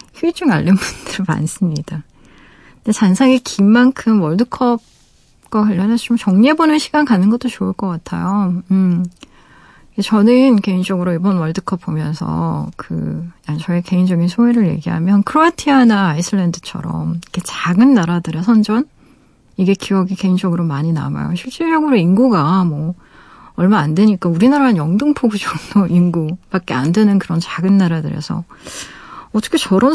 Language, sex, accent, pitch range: Korean, female, native, 170-225 Hz